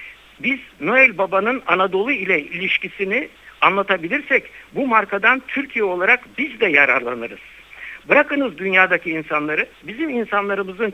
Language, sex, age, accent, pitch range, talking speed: Turkish, male, 60-79, native, 175-265 Hz, 105 wpm